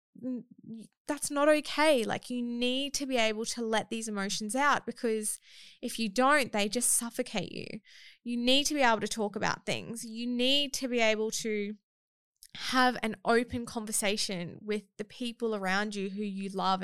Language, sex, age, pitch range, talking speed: English, female, 20-39, 210-255 Hz, 175 wpm